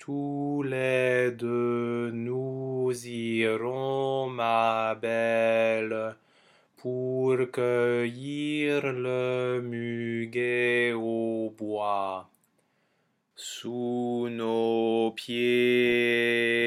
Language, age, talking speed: English, 20-39, 60 wpm